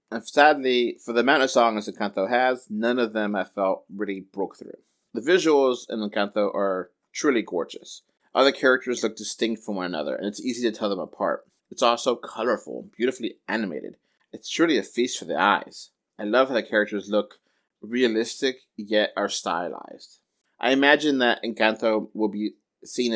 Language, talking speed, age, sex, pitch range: English, 175 wpm, 30-49, male, 105-130 Hz